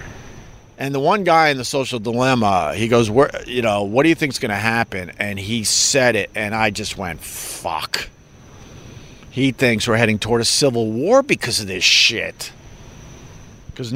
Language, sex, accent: English, male, American